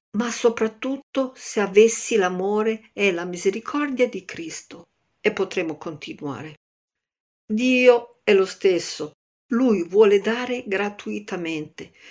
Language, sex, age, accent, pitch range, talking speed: Italian, female, 50-69, native, 175-235 Hz, 105 wpm